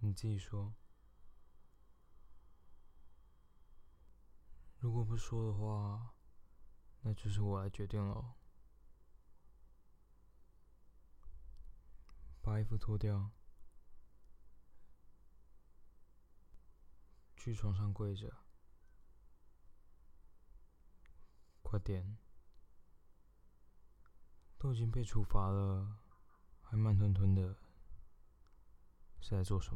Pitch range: 75-100 Hz